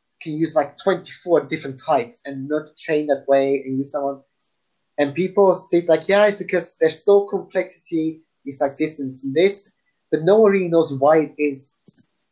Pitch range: 145-180 Hz